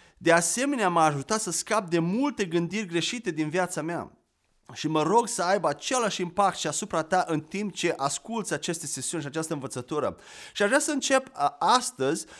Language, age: Romanian, 30-49